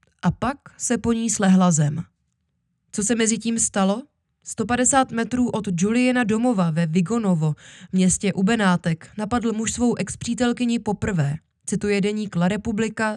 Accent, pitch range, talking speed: native, 185-225 Hz, 135 wpm